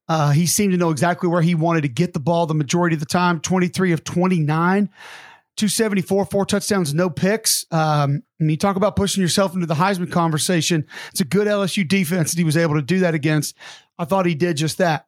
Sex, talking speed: male, 225 wpm